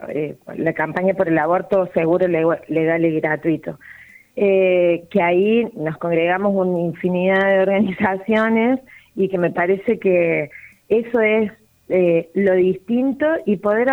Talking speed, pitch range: 130 wpm, 175-225 Hz